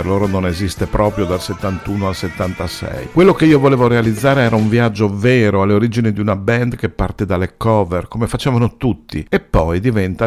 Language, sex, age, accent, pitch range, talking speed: Italian, male, 50-69, native, 95-120 Hz, 185 wpm